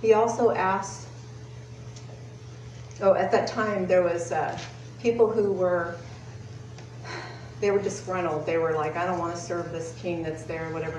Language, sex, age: English, female, 40-59